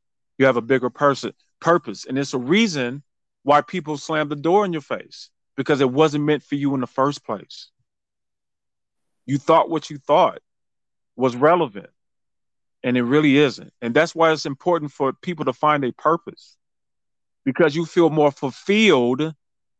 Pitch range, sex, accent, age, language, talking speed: 135-175 Hz, male, American, 30-49, English, 165 wpm